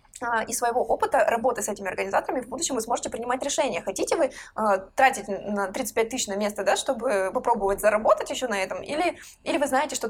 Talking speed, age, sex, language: 195 wpm, 20-39, female, Russian